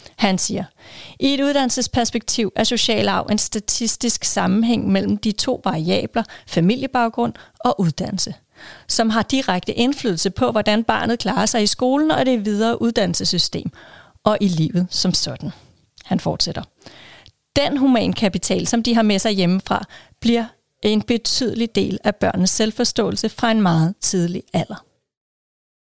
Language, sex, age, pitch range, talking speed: Danish, female, 30-49, 195-240 Hz, 140 wpm